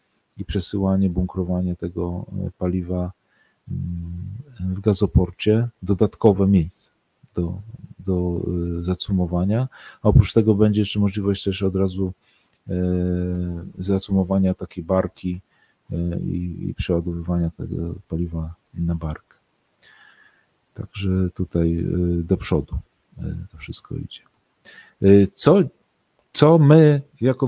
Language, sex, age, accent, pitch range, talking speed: Polish, male, 40-59, native, 90-110 Hz, 90 wpm